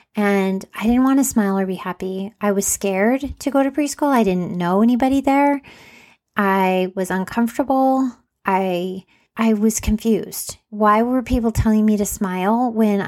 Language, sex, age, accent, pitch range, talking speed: English, female, 30-49, American, 195-230 Hz, 165 wpm